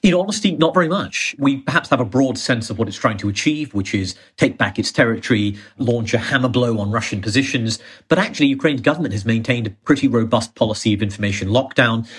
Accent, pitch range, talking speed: British, 110-135 Hz, 210 wpm